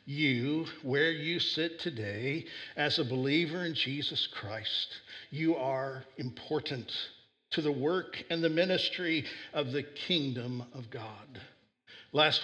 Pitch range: 145-205 Hz